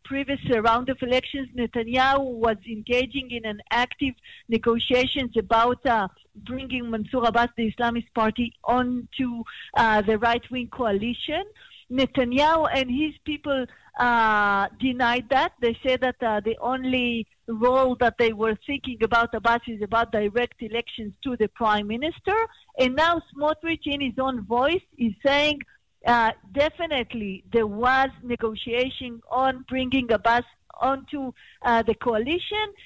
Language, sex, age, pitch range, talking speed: English, female, 50-69, 225-265 Hz, 135 wpm